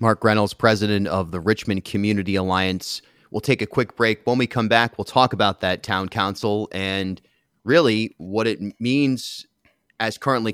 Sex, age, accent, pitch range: male, 30-49, American, 95-130 Hz